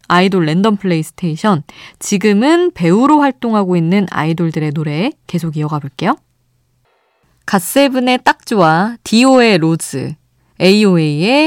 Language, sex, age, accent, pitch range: Korean, female, 20-39, native, 160-220 Hz